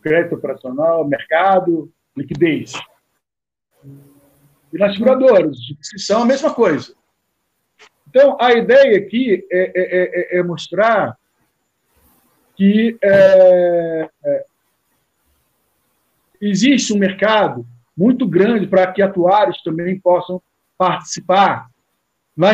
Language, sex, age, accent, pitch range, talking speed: Portuguese, male, 50-69, Brazilian, 150-195 Hz, 95 wpm